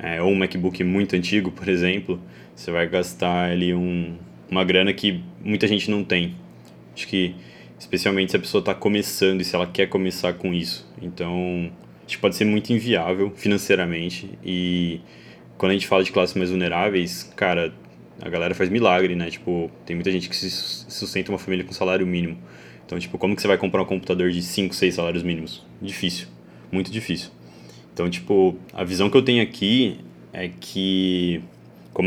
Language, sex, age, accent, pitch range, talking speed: Portuguese, male, 20-39, Brazilian, 85-100 Hz, 180 wpm